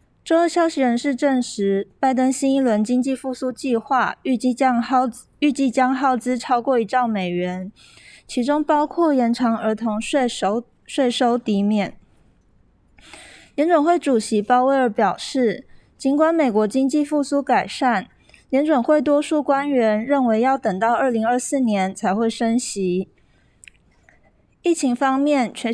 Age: 20-39